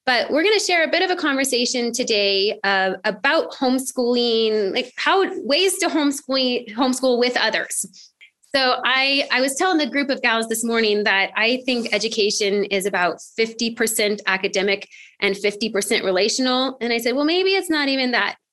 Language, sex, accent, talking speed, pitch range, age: English, female, American, 170 wpm, 200-270 Hz, 20-39